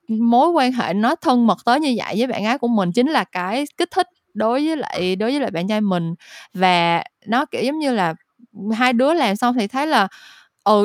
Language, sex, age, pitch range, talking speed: Vietnamese, female, 20-39, 185-260 Hz, 230 wpm